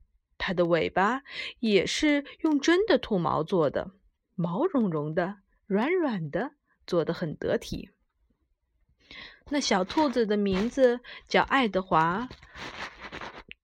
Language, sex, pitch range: Chinese, female, 190-295 Hz